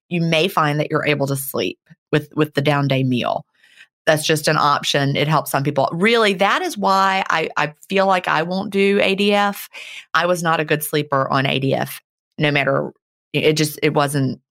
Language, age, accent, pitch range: English, 30-49, American, 145-185 Hz